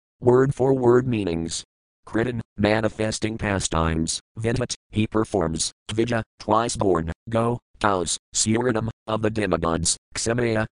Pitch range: 95-115 Hz